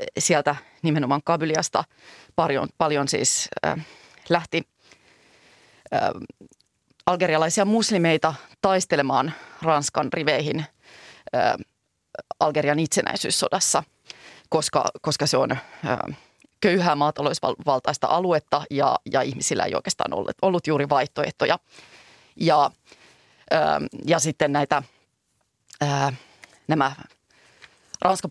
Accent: native